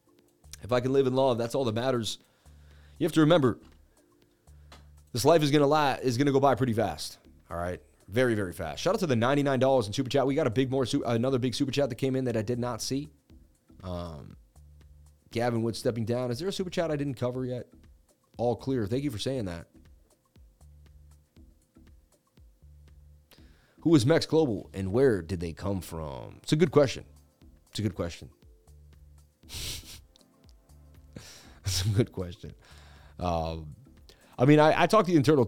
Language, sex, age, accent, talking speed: English, male, 30-49, American, 185 wpm